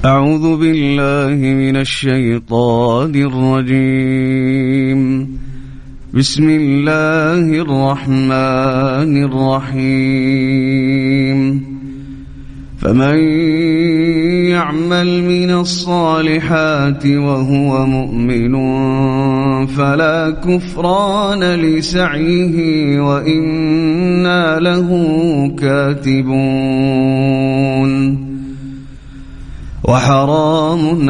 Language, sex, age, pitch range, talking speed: Arabic, male, 30-49, 135-155 Hz, 40 wpm